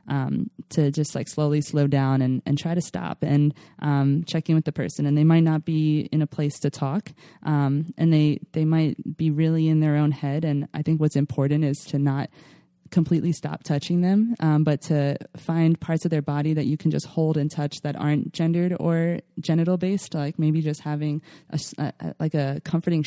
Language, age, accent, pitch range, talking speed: English, 20-39, American, 145-165 Hz, 215 wpm